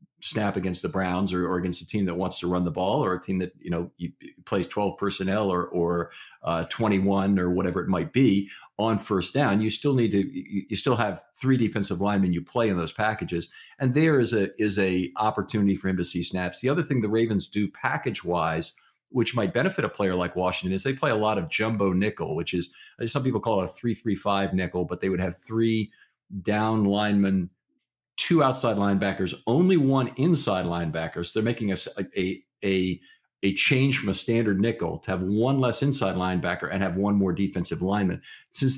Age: 40-59